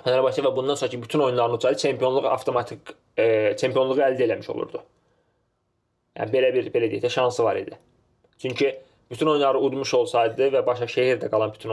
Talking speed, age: 170 wpm, 20-39